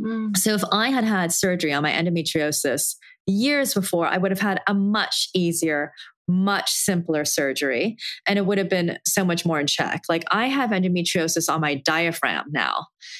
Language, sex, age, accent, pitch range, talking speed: English, female, 20-39, American, 160-195 Hz, 175 wpm